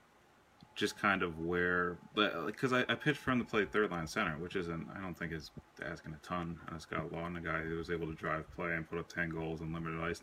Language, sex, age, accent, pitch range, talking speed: English, male, 30-49, American, 85-100 Hz, 250 wpm